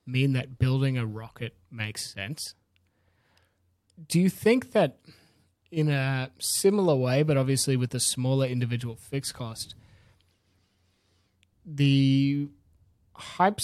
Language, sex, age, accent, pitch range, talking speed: English, male, 20-39, Australian, 110-140 Hz, 110 wpm